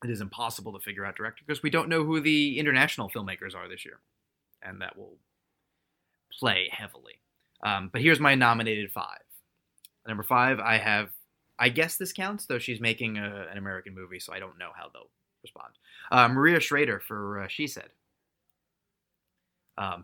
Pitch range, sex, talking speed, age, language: 100-135 Hz, male, 175 wpm, 20-39, English